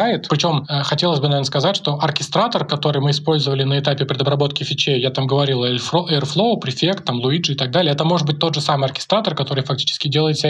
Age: 20-39